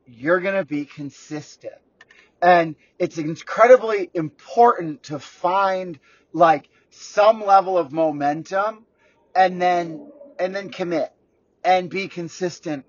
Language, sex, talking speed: English, male, 110 wpm